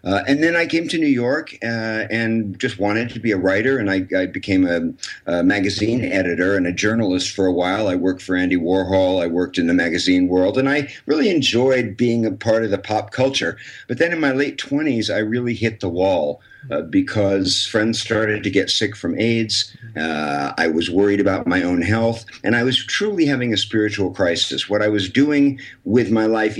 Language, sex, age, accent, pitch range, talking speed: English, male, 50-69, American, 100-130 Hz, 215 wpm